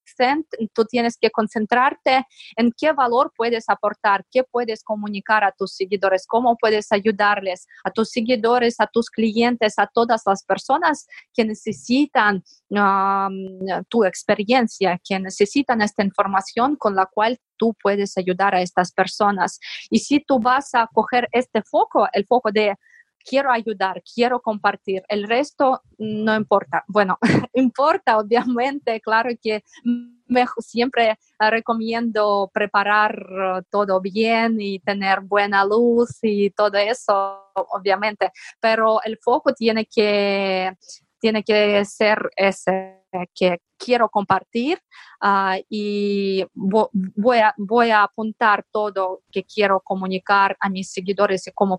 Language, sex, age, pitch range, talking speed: Spanish, female, 20-39, 195-235 Hz, 125 wpm